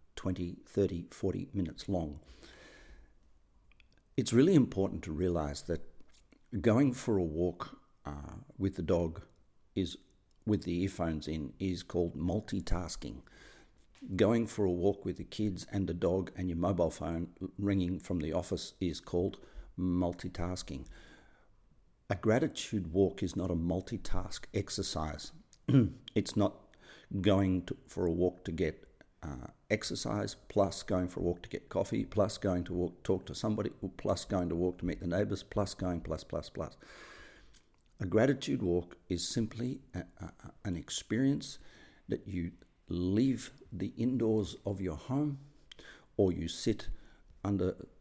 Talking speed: 140 wpm